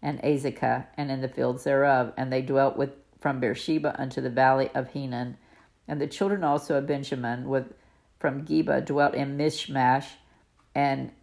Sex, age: female, 50-69